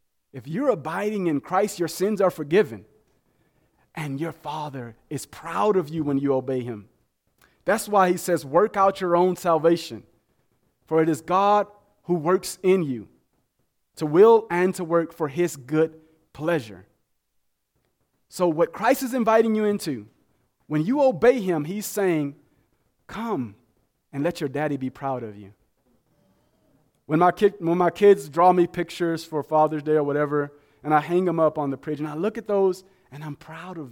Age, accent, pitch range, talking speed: 30-49, American, 145-190 Hz, 175 wpm